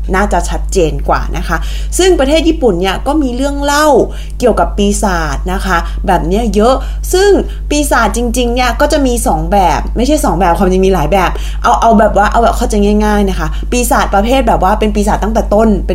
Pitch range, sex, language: 180-235 Hz, female, Thai